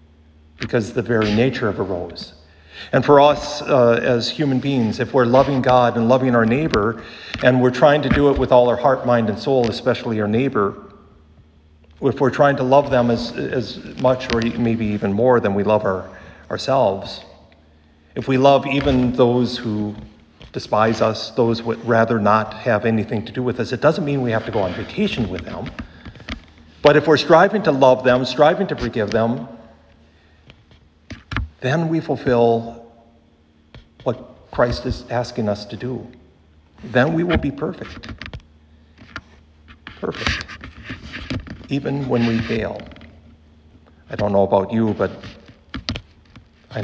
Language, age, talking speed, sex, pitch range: English, 50-69, 160 wpm, male, 95-125 Hz